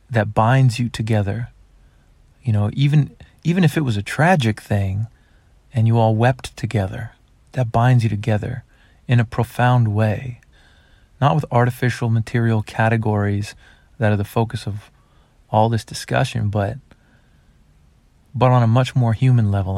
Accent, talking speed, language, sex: American, 145 wpm, English, male